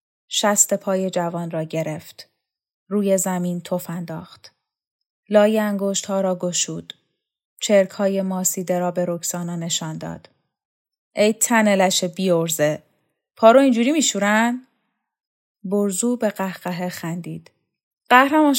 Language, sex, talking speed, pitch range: Persian, female, 110 wpm, 175-215 Hz